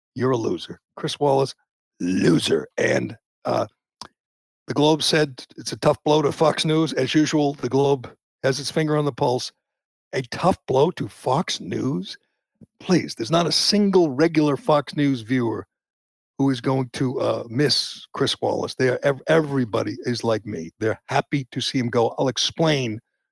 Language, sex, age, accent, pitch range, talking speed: English, male, 60-79, American, 130-160 Hz, 165 wpm